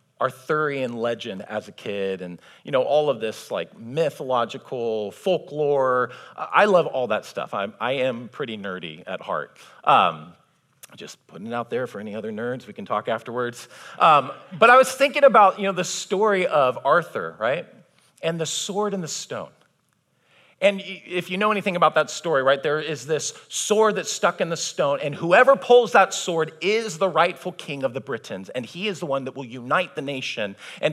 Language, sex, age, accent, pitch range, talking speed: English, male, 40-59, American, 125-185 Hz, 190 wpm